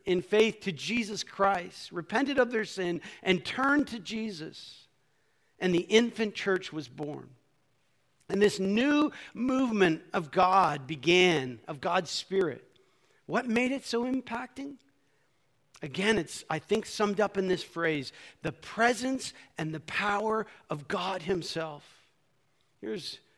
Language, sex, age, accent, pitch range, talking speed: English, male, 50-69, American, 160-210 Hz, 135 wpm